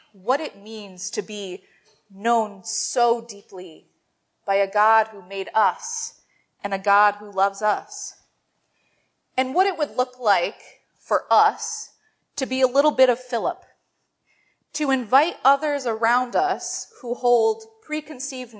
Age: 30-49